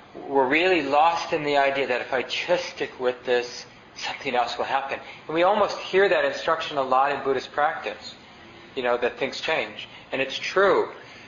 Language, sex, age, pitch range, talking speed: English, male, 40-59, 125-145 Hz, 190 wpm